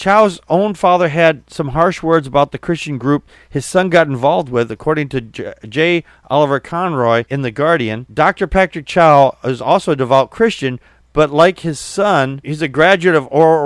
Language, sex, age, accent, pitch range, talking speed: English, male, 40-59, American, 150-205 Hz, 185 wpm